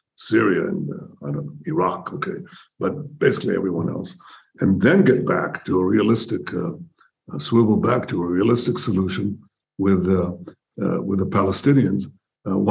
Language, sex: English, male